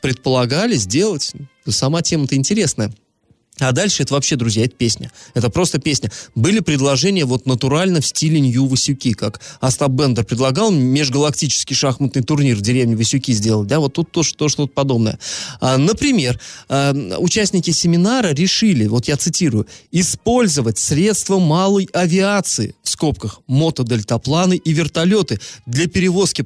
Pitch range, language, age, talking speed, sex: 135-190 Hz, Russian, 20-39, 135 wpm, male